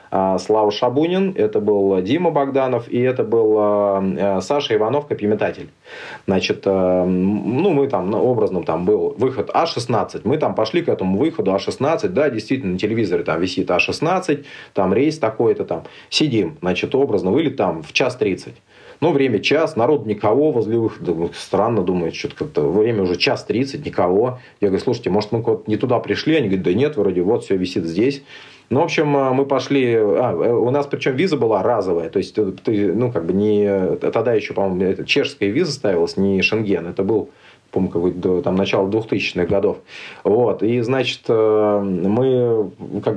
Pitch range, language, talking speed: 100-135 Hz, Russian, 165 wpm